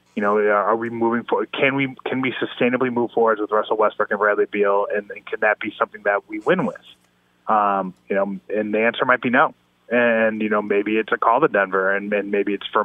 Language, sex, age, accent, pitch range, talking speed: English, male, 20-39, American, 100-120 Hz, 245 wpm